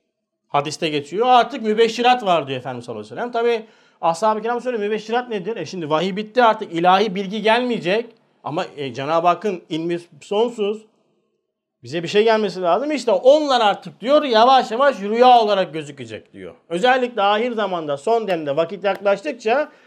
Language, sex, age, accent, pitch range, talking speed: Turkish, male, 50-69, native, 175-250 Hz, 155 wpm